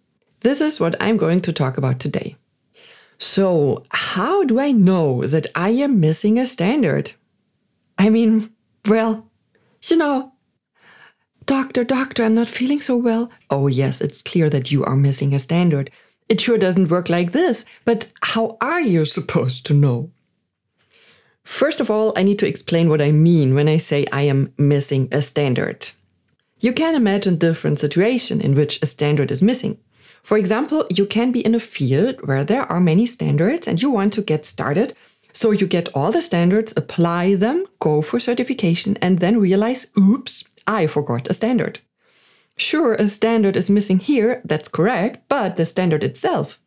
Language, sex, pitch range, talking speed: German, female, 155-230 Hz, 170 wpm